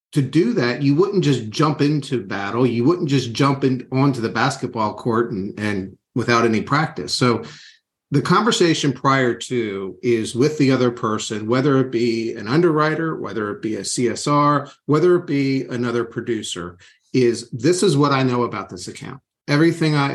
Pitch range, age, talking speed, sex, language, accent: 115-145 Hz, 50-69, 175 wpm, male, English, American